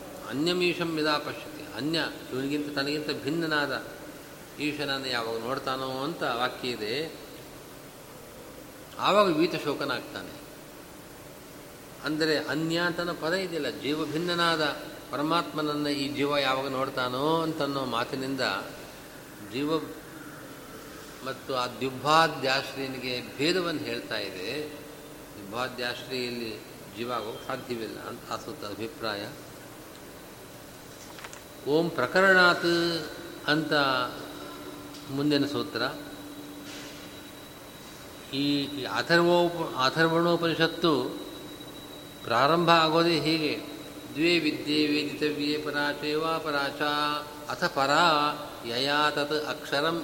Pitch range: 140-155 Hz